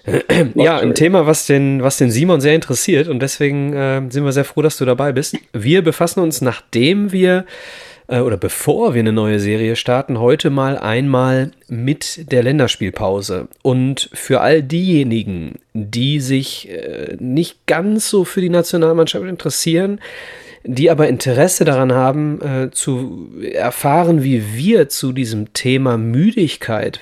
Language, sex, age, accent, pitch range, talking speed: German, male, 30-49, German, 120-160 Hz, 150 wpm